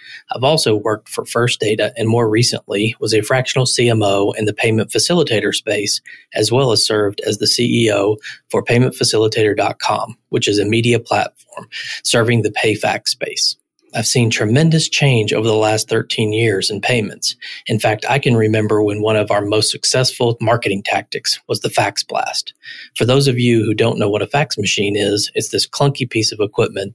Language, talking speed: English, 185 wpm